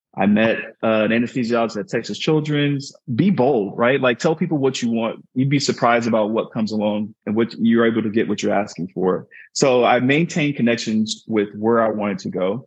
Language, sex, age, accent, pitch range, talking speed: English, male, 20-39, American, 115-155 Hz, 210 wpm